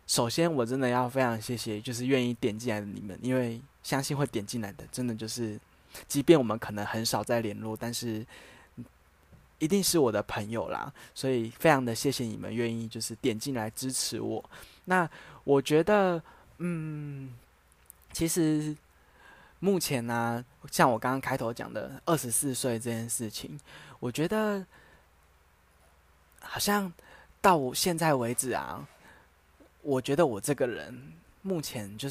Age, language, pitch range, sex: 20-39, Chinese, 110-145 Hz, male